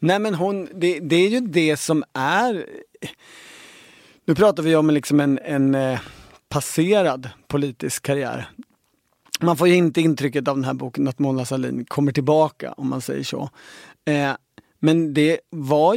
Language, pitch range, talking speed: Swedish, 135-160 Hz, 155 wpm